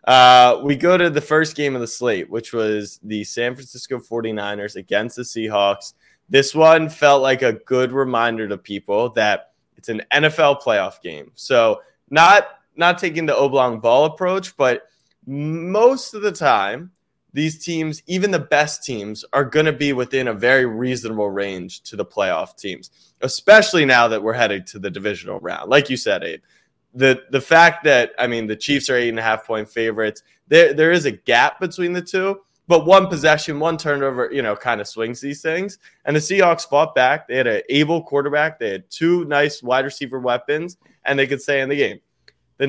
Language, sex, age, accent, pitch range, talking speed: English, male, 20-39, American, 115-155 Hz, 195 wpm